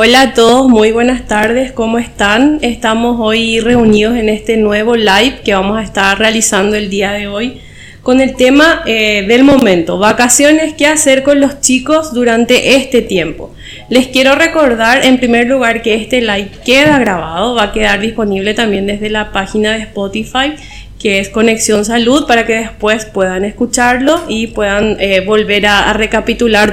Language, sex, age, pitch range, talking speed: Spanish, female, 20-39, 210-255 Hz, 170 wpm